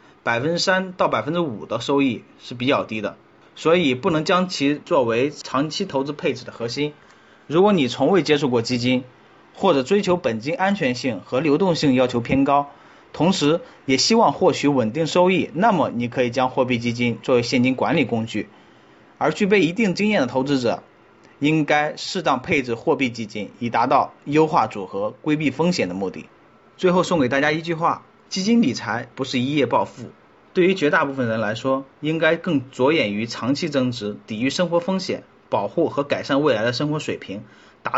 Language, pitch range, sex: Chinese, 125-165 Hz, male